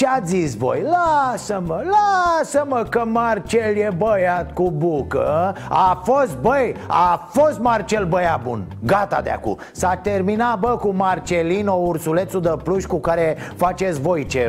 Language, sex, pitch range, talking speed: Romanian, male, 155-200 Hz, 145 wpm